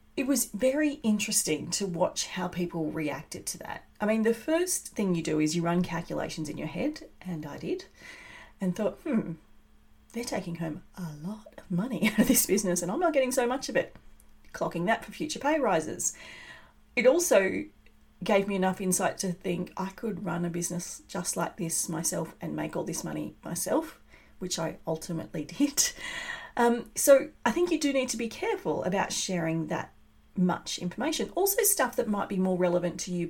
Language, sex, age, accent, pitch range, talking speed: English, female, 30-49, Australian, 175-250 Hz, 195 wpm